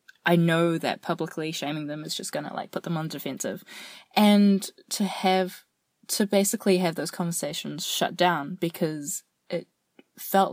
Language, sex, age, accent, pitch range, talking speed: English, female, 20-39, Australian, 160-195 Hz, 155 wpm